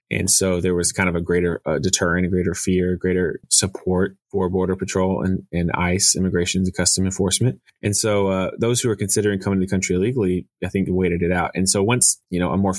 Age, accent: 20-39, American